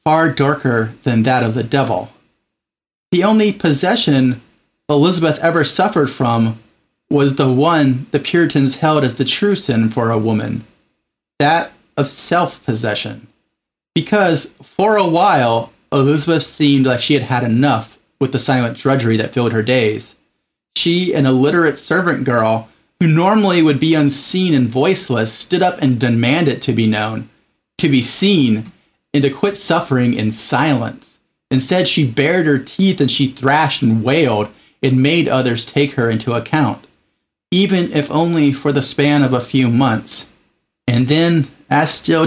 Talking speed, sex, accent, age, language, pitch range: 155 wpm, male, American, 30-49, English, 120-155 Hz